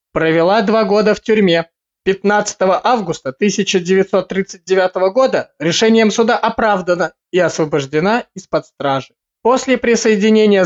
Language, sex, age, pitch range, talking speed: Russian, male, 20-39, 160-215 Hz, 105 wpm